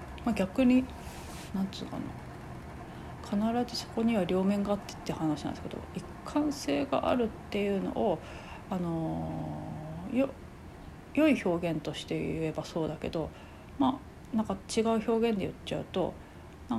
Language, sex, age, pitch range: Japanese, female, 40-59, 150-225 Hz